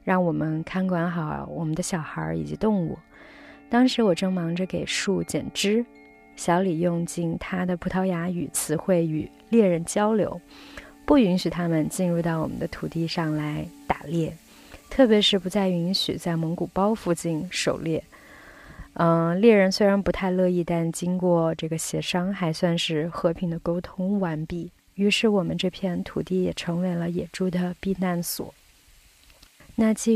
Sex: female